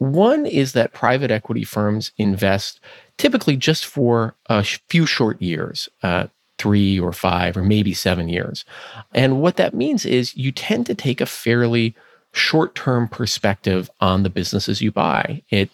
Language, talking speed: English, 155 wpm